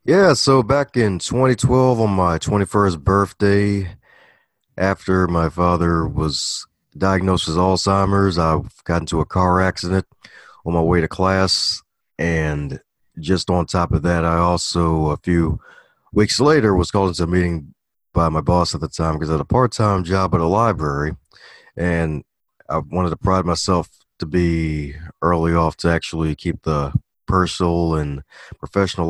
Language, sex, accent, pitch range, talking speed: English, male, American, 80-100 Hz, 155 wpm